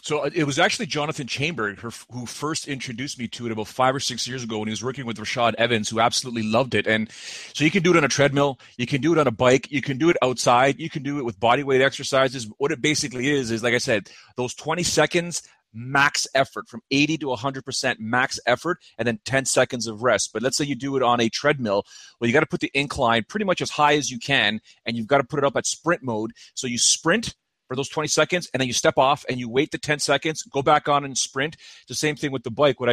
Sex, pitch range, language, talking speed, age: male, 115-145 Hz, English, 265 wpm, 30-49